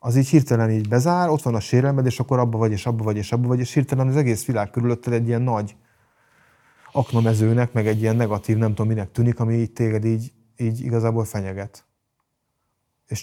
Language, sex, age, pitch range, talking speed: Hungarian, male, 30-49, 110-120 Hz, 205 wpm